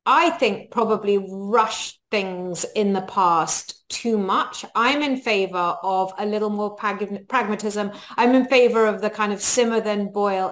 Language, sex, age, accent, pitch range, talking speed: English, female, 30-49, British, 190-245 Hz, 160 wpm